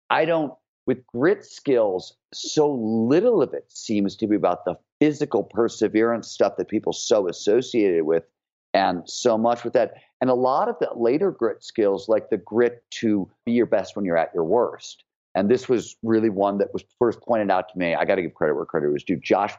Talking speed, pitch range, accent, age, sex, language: 210 wpm, 105-155 Hz, American, 50-69, male, English